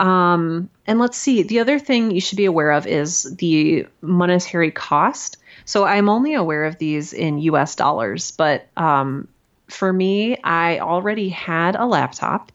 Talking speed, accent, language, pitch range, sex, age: 165 wpm, American, English, 155-195 Hz, female, 30-49